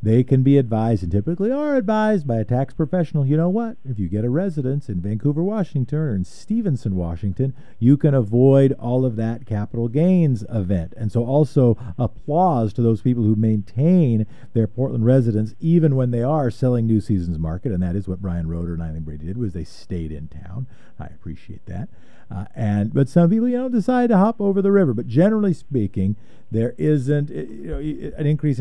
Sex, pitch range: male, 115-165 Hz